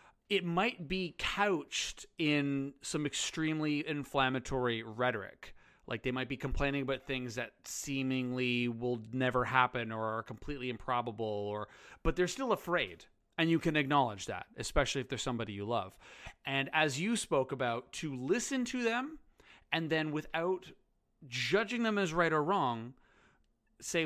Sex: male